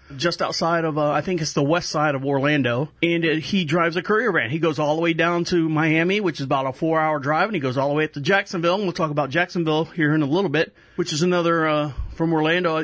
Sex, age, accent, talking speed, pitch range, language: male, 40-59, American, 270 wpm, 150-190 Hz, English